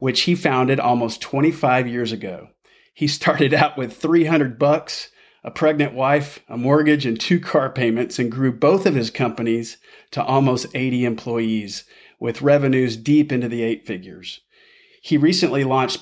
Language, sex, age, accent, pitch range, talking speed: English, male, 40-59, American, 115-145 Hz, 155 wpm